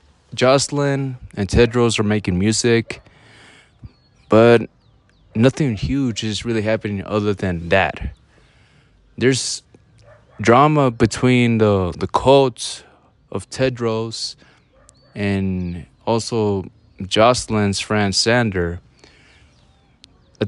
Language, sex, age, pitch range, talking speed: English, male, 20-39, 100-120 Hz, 85 wpm